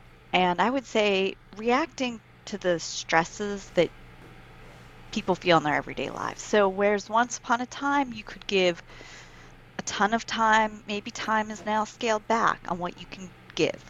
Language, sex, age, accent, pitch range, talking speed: English, female, 30-49, American, 175-225 Hz, 170 wpm